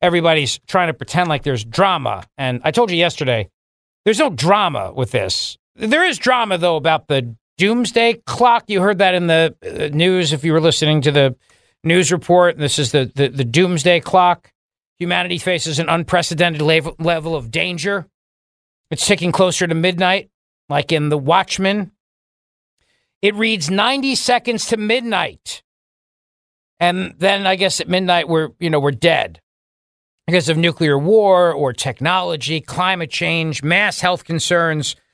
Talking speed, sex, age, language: 155 wpm, male, 50-69, English